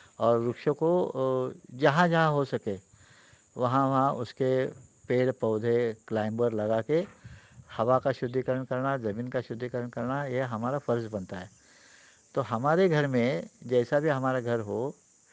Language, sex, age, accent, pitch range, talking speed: Marathi, male, 60-79, native, 115-145 Hz, 110 wpm